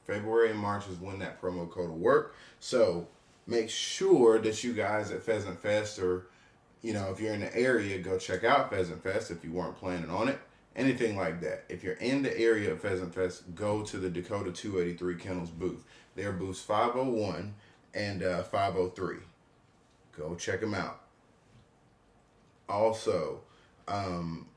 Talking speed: 165 wpm